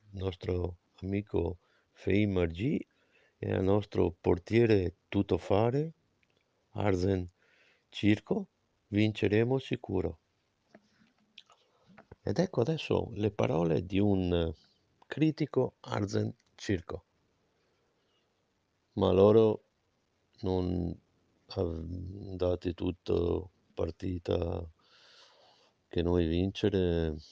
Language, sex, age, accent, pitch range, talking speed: Italian, male, 50-69, native, 85-100 Hz, 75 wpm